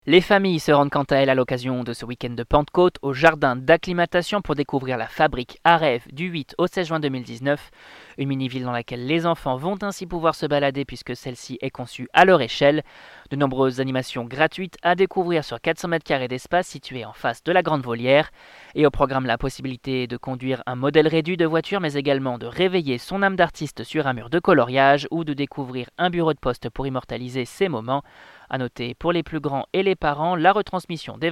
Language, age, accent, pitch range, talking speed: French, 20-39, French, 130-175 Hz, 215 wpm